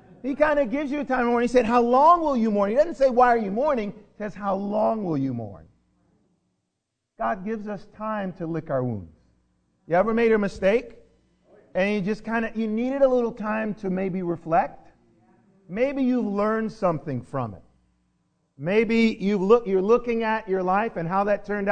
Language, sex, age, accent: English, male, 50-69, American